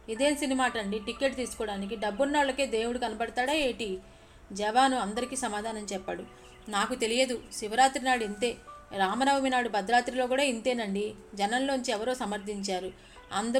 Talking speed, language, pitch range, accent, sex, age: 130 wpm, English, 210-255 Hz, Indian, female, 30-49